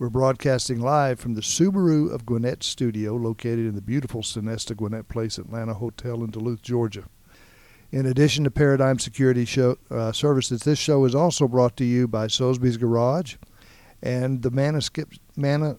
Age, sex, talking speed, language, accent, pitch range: 60-79, male, 160 wpm, English, American, 115-140 Hz